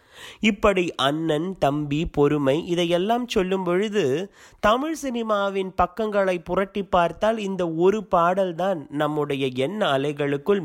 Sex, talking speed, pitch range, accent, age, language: male, 100 wpm, 135-190 Hz, native, 30-49, Tamil